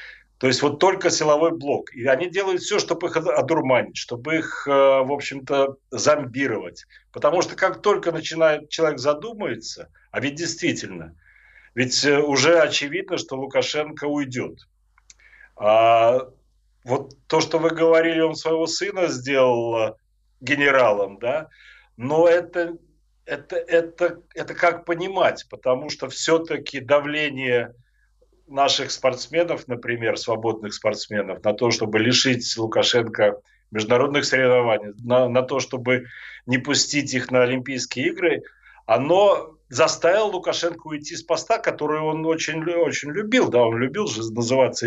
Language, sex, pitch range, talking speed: Ukrainian, male, 125-160 Hz, 125 wpm